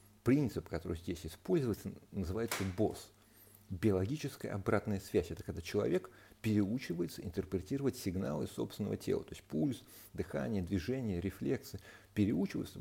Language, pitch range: Russian, 95-115 Hz